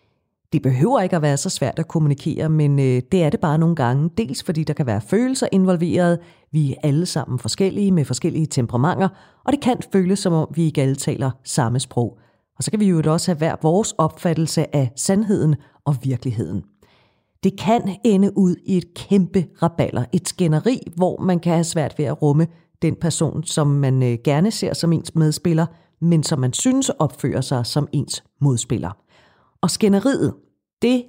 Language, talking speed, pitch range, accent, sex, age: Danish, 185 wpm, 145-190 Hz, native, female, 40-59